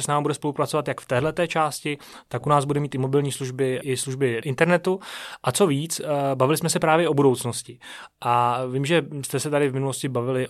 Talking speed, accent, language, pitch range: 210 wpm, native, Czech, 130-155 Hz